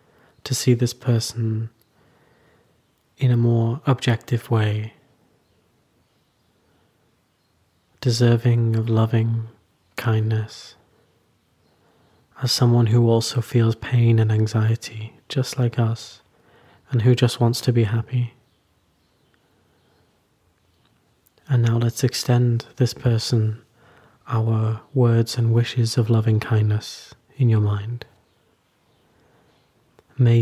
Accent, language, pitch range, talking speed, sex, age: British, English, 110-125 Hz, 95 wpm, male, 30-49